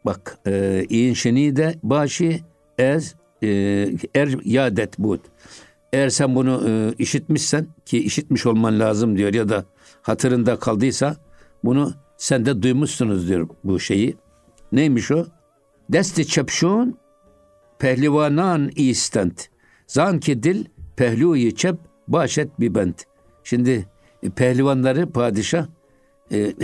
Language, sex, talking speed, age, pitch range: Turkish, male, 105 wpm, 60-79, 110-150 Hz